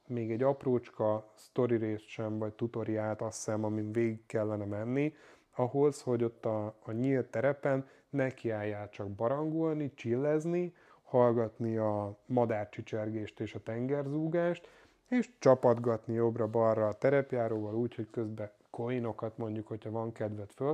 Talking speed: 125 wpm